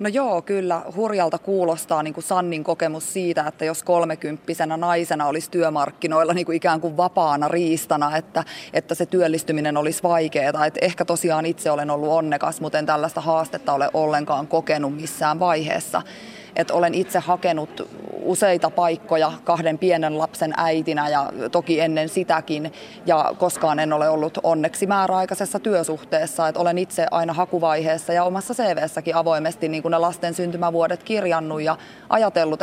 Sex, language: female, Finnish